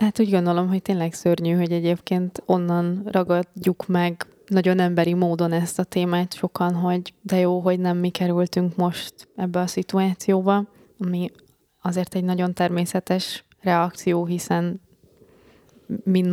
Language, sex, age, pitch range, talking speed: Hungarian, female, 20-39, 175-190 Hz, 135 wpm